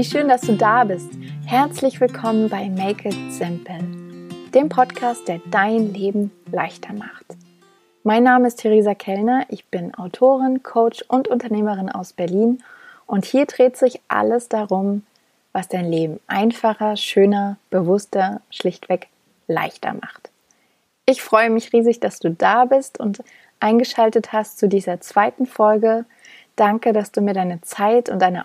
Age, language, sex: 30-49, German, female